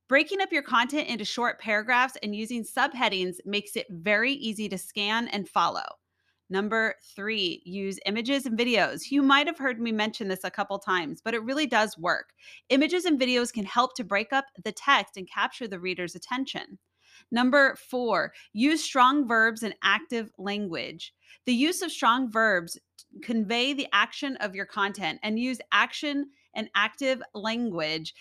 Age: 30-49